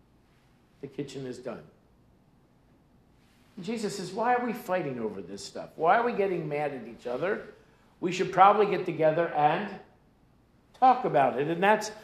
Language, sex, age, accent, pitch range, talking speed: English, male, 50-69, American, 155-205 Hz, 165 wpm